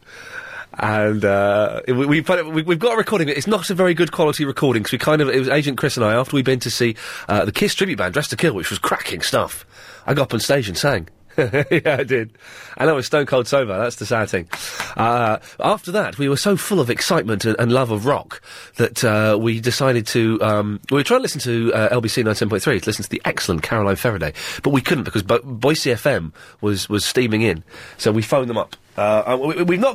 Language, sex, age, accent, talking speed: English, male, 30-49, British, 245 wpm